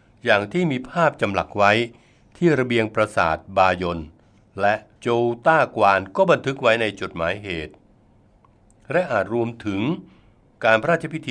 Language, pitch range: Thai, 100-125 Hz